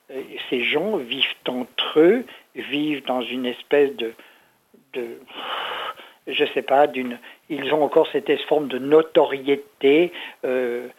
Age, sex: 60-79, male